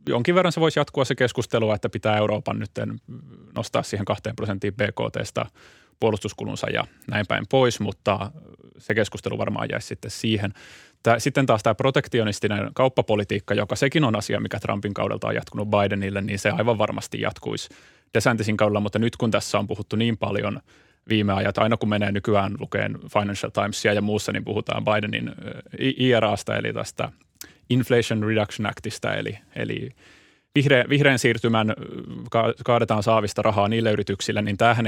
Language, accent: Finnish, native